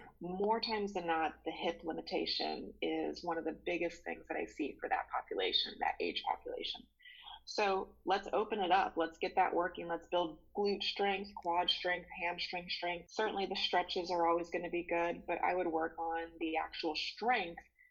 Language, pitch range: English, 165-190 Hz